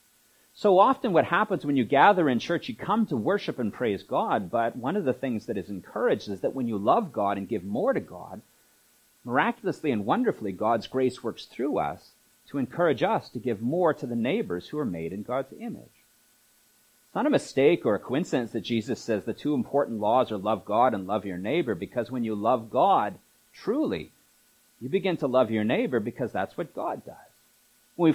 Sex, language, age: male, English, 40-59